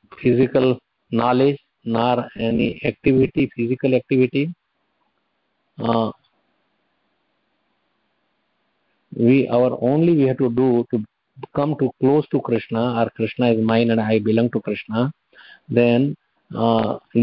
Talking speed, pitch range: 110 wpm, 115-140 Hz